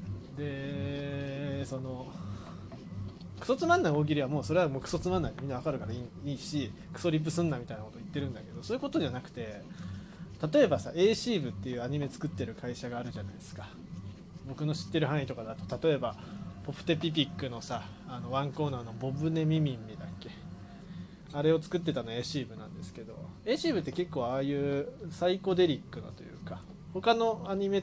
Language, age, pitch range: Japanese, 20-39, 135-180 Hz